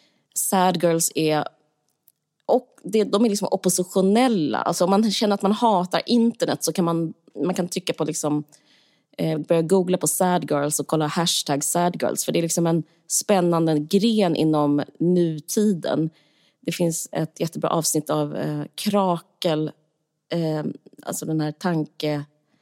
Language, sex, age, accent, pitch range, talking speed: English, female, 30-49, Swedish, 150-180 Hz, 145 wpm